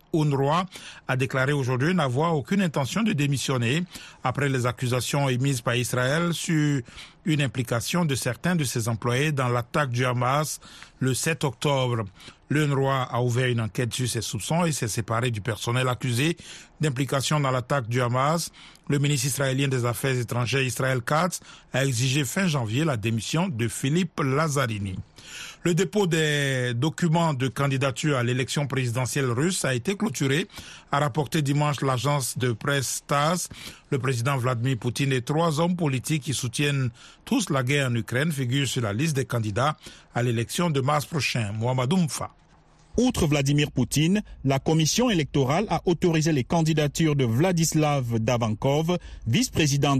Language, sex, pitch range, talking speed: French, male, 125-160 Hz, 150 wpm